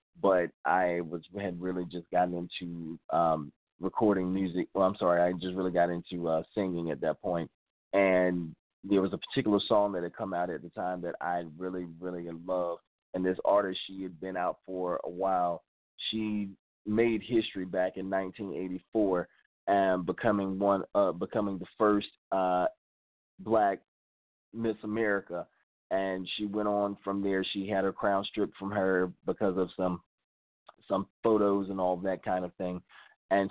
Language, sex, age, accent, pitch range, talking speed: English, male, 20-39, American, 90-100 Hz, 170 wpm